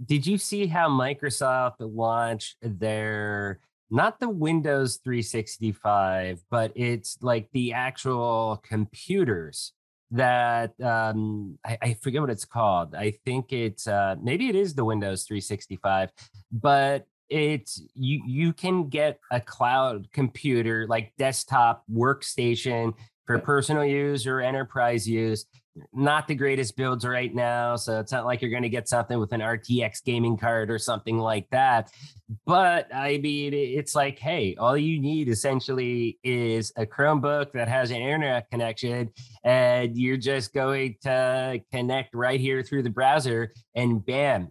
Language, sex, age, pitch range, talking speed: English, male, 30-49, 115-135 Hz, 145 wpm